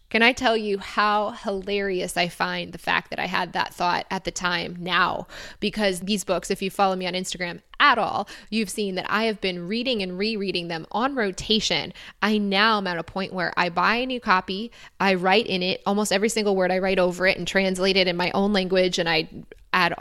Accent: American